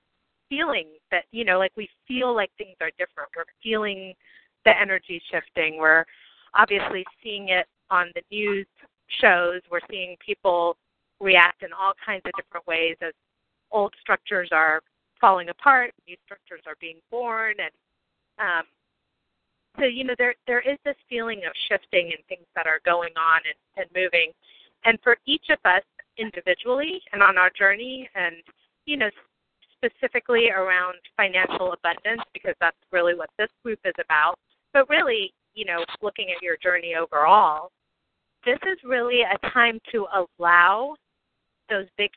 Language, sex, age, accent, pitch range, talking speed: English, female, 30-49, American, 180-235 Hz, 155 wpm